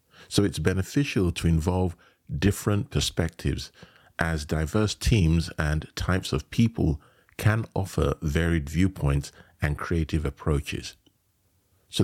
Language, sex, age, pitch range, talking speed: English, male, 50-69, 80-100 Hz, 110 wpm